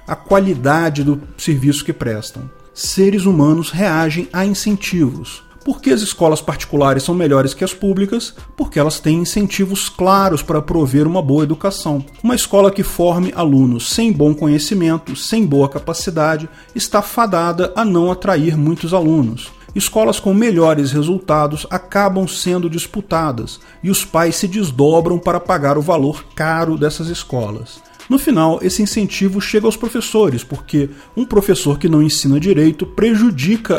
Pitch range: 150-200 Hz